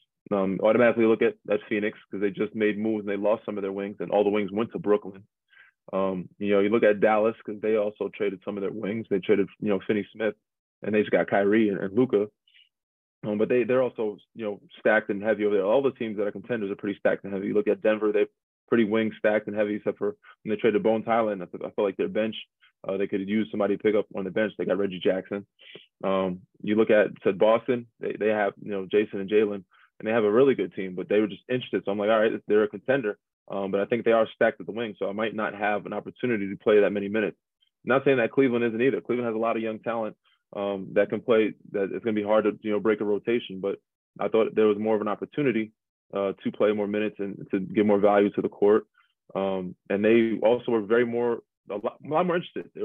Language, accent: English, American